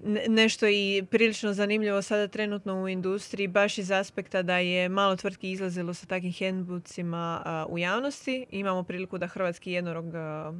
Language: Croatian